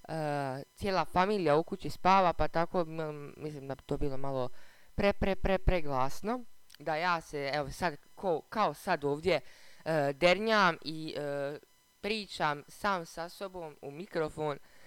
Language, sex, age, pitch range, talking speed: Croatian, female, 20-39, 140-185 Hz, 155 wpm